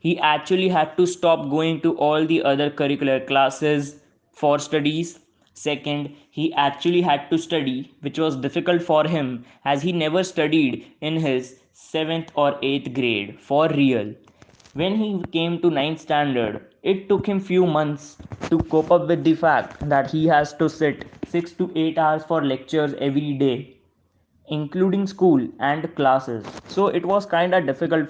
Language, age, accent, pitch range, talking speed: English, 20-39, Indian, 140-170 Hz, 160 wpm